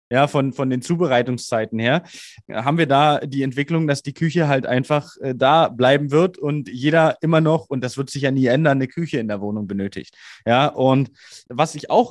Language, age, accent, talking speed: German, 20-39, German, 210 wpm